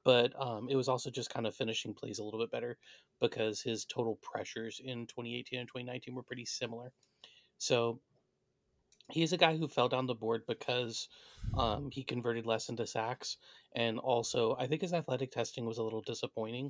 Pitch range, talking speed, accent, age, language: 120-140 Hz, 185 wpm, American, 30-49, English